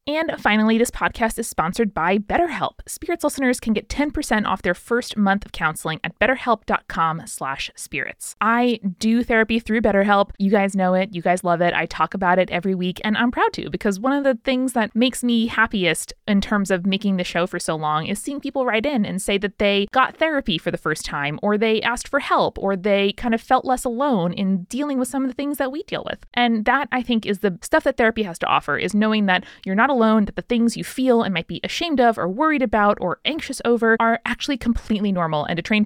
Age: 20-39